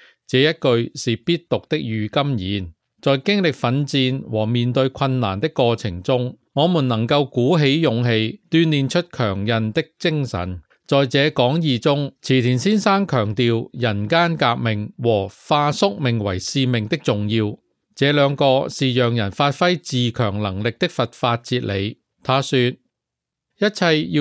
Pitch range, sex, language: 115-150 Hz, male, English